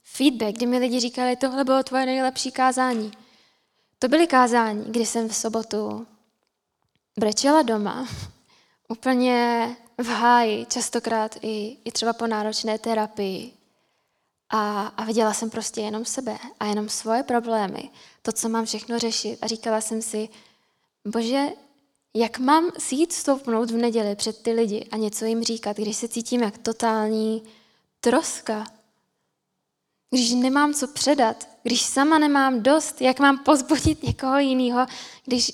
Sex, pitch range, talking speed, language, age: female, 225-260 Hz, 140 wpm, Czech, 10-29